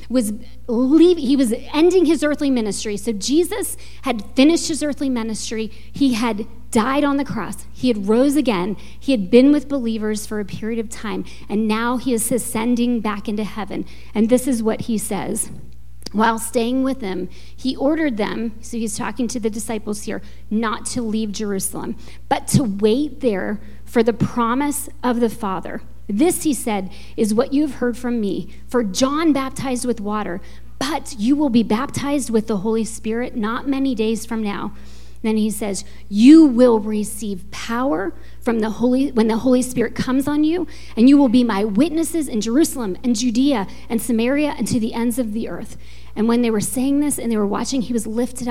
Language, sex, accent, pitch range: English, female, American, 215-270 Hz